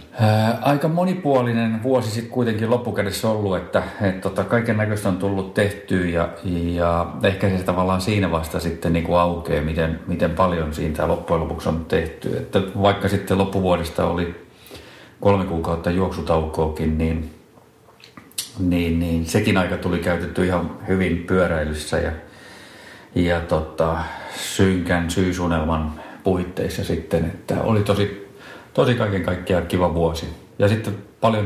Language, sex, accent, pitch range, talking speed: Finnish, male, native, 80-100 Hz, 130 wpm